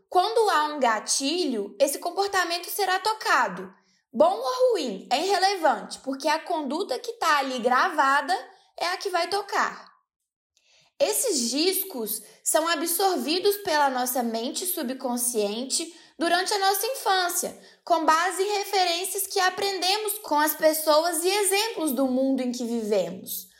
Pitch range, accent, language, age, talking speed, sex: 255-385 Hz, Brazilian, Portuguese, 10-29, 135 wpm, female